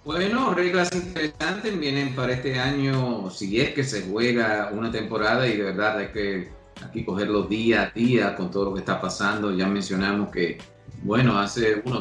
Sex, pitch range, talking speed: male, 95-125 Hz, 190 wpm